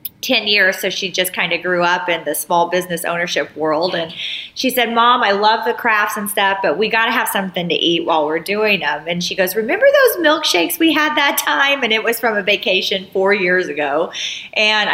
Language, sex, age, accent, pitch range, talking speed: English, female, 40-59, American, 185-230 Hz, 230 wpm